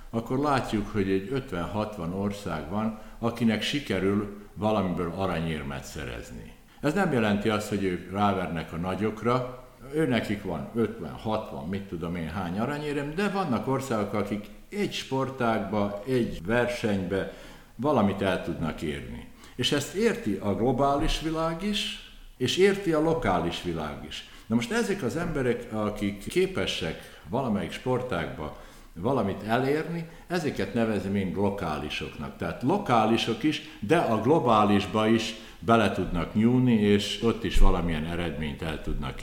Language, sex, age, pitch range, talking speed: Hungarian, male, 60-79, 95-130 Hz, 130 wpm